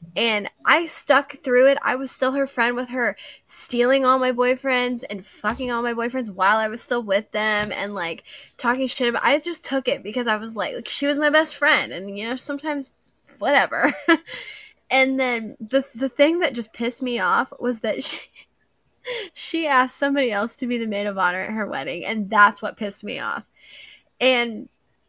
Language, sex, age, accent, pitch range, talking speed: English, female, 10-29, American, 195-255 Hz, 200 wpm